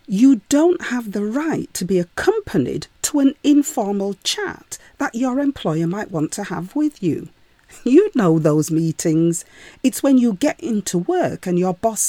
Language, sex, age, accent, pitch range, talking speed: English, female, 40-59, British, 185-290 Hz, 170 wpm